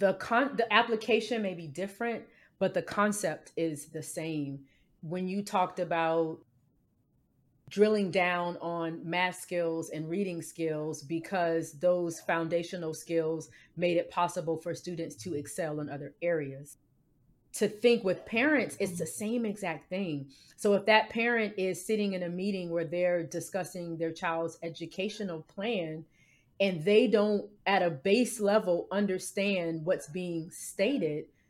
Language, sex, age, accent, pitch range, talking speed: English, female, 30-49, American, 160-200 Hz, 145 wpm